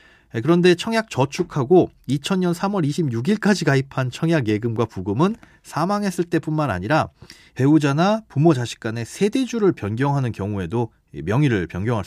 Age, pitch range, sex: 30-49, 115-170 Hz, male